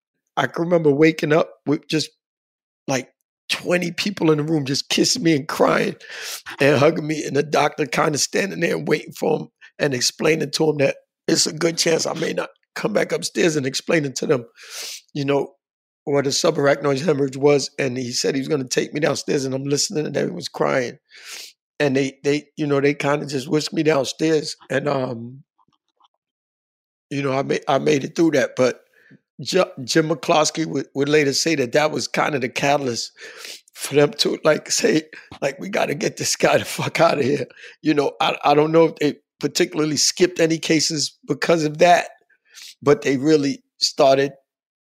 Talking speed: 195 wpm